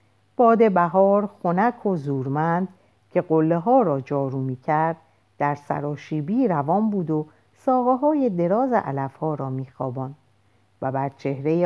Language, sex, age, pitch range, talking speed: Persian, female, 50-69, 135-200 Hz, 140 wpm